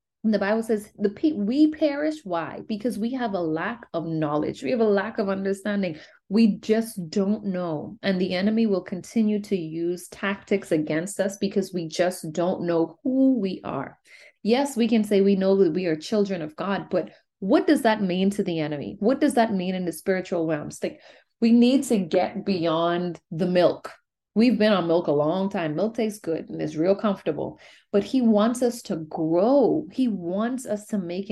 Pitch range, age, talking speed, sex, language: 180-230 Hz, 30-49, 195 wpm, female, English